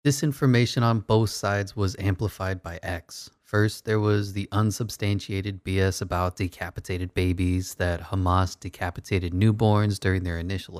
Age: 20-39